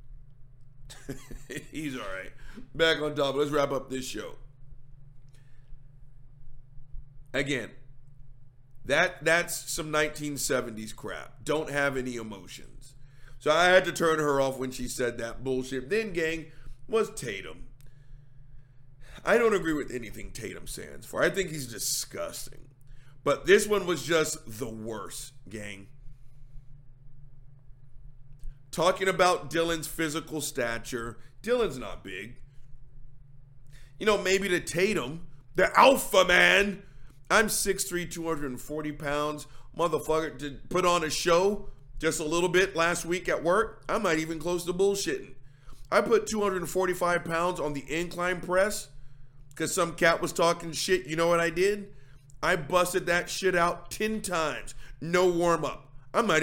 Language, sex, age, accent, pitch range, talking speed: English, male, 50-69, American, 135-175 Hz, 135 wpm